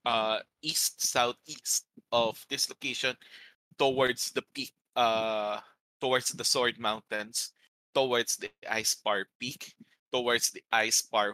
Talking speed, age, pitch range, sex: 120 wpm, 20-39, 100-125 Hz, male